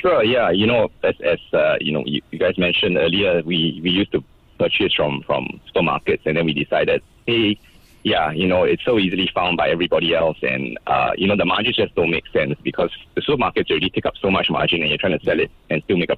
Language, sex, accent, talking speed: English, male, Malaysian, 240 wpm